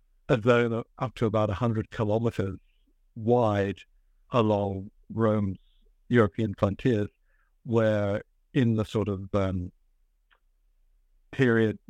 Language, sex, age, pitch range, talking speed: English, male, 60-79, 100-115 Hz, 95 wpm